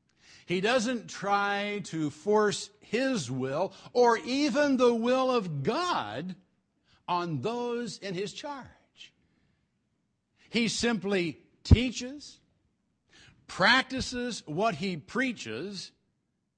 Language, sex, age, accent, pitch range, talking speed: English, male, 60-79, American, 150-230 Hz, 90 wpm